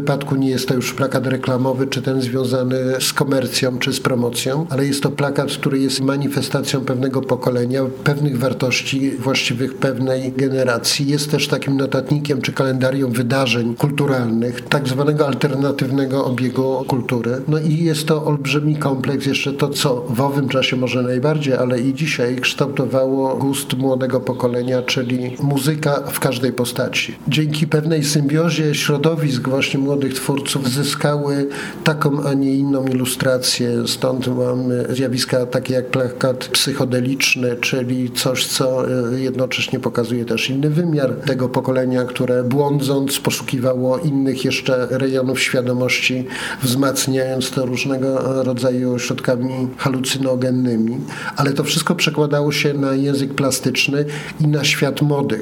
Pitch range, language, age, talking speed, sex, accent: 130-140 Hz, Polish, 50-69, 135 wpm, male, native